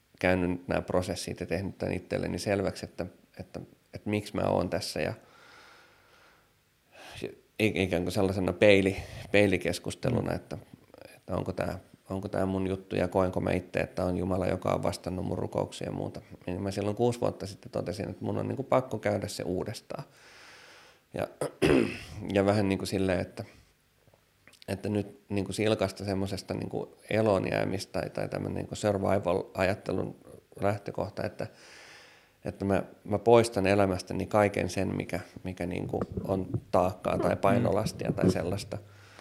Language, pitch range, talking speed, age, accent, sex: Finnish, 90-105 Hz, 145 wpm, 30-49, native, male